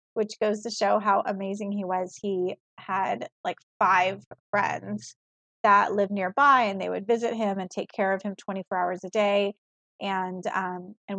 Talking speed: 175 wpm